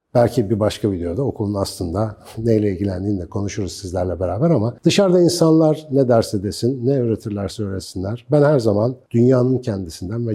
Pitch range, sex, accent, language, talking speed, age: 100-135 Hz, male, native, Turkish, 155 wpm, 50-69